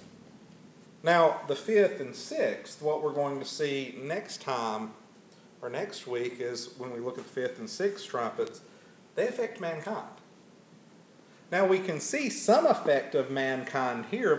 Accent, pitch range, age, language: American, 165-215 Hz, 50-69, English